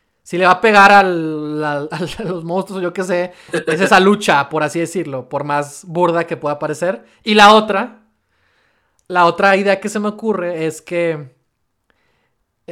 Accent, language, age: Mexican, Spanish, 20-39